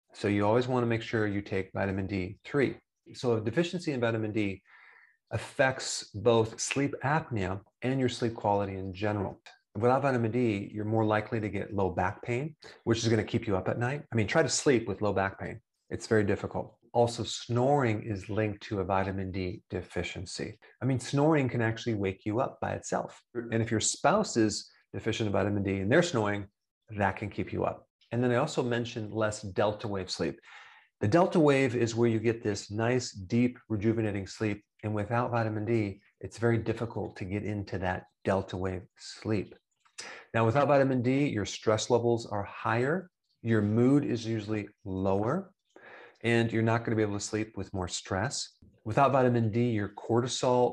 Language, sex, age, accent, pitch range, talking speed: English, male, 30-49, American, 100-120 Hz, 190 wpm